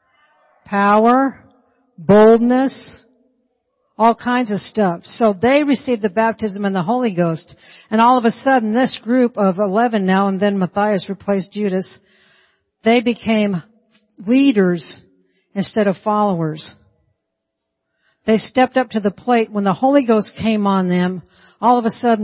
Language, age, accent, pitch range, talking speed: English, 60-79, American, 190-240 Hz, 145 wpm